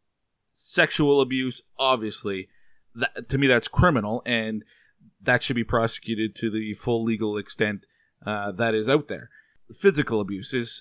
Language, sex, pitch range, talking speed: English, male, 110-135 Hz, 140 wpm